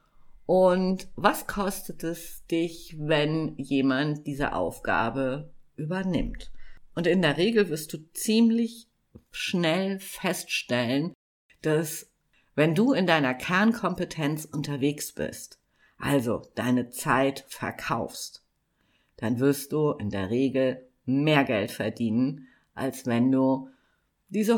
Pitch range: 135-180 Hz